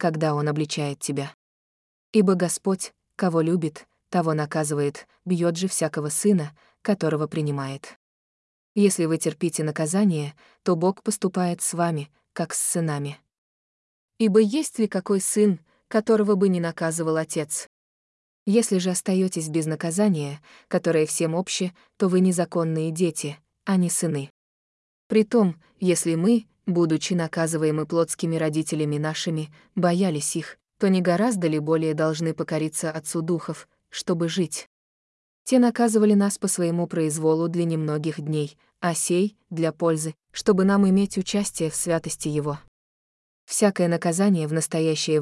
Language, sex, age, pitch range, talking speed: Russian, female, 20-39, 155-190 Hz, 130 wpm